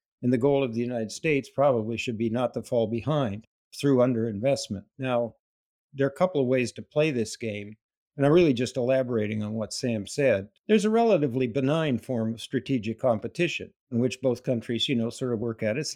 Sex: male